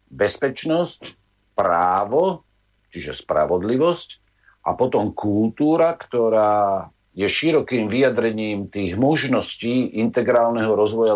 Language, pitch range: Slovak, 100-140 Hz